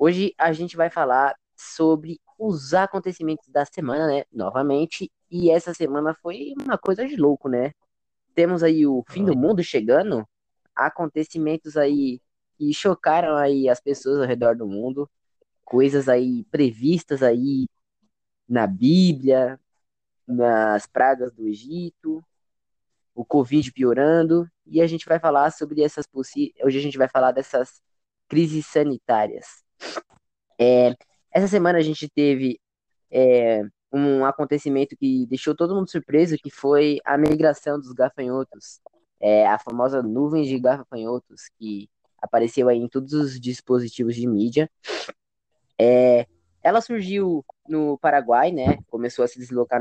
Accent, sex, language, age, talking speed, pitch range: Brazilian, female, Portuguese, 10-29, 130 wpm, 125-165 Hz